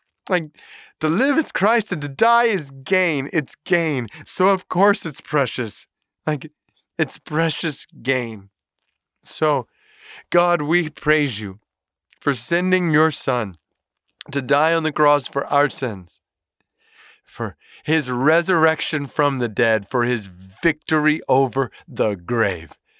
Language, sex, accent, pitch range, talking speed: English, male, American, 120-170 Hz, 130 wpm